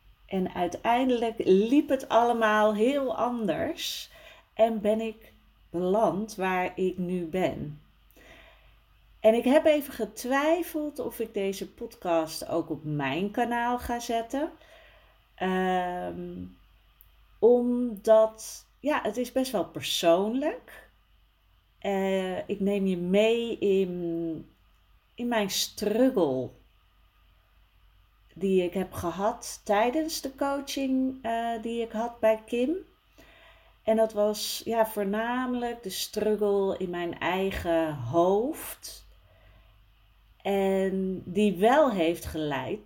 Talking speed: 105 wpm